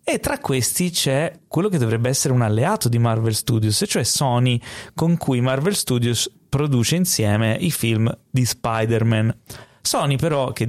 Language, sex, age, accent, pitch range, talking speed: Italian, male, 30-49, native, 110-135 Hz, 155 wpm